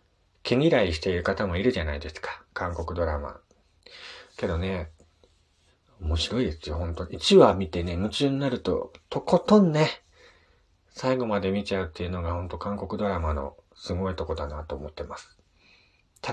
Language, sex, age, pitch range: Japanese, male, 40-59, 85-120 Hz